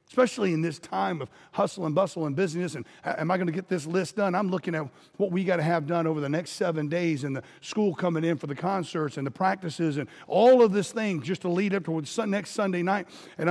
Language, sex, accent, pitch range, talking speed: English, male, American, 135-180 Hz, 260 wpm